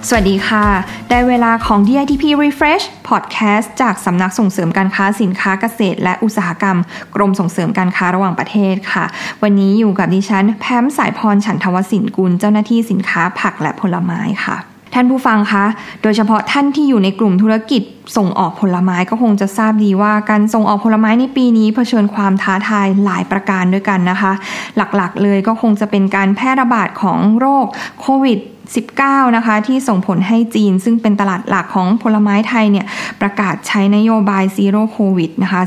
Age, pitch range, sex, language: 20-39, 195-230 Hz, female, Thai